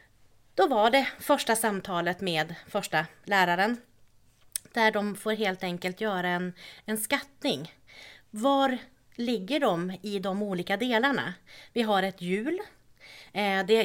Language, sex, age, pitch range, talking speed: Swedish, female, 30-49, 170-225 Hz, 125 wpm